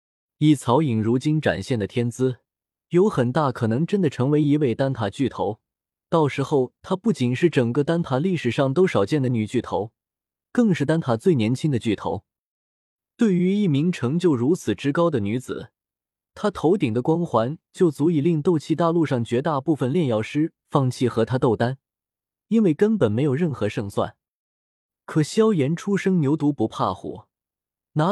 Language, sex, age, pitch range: Chinese, male, 20-39, 120-165 Hz